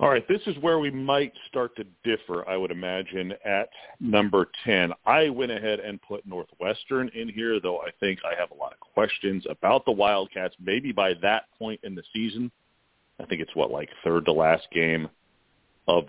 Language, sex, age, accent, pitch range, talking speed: English, male, 40-59, American, 90-110 Hz, 200 wpm